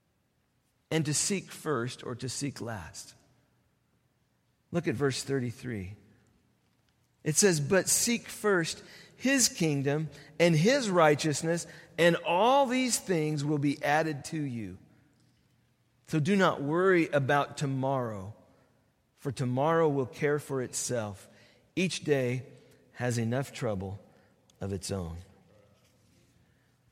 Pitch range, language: 125-170 Hz, English